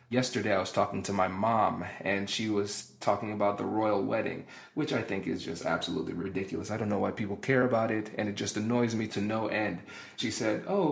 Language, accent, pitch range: English, American, 115-135 Hz